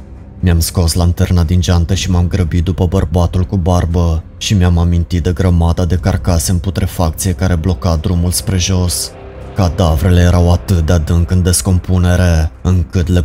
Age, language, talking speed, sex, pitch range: 20-39, Romanian, 160 wpm, male, 85-95 Hz